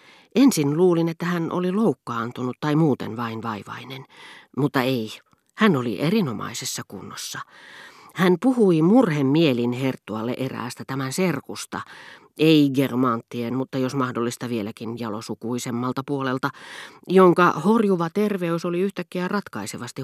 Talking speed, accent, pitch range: 110 wpm, native, 120-160 Hz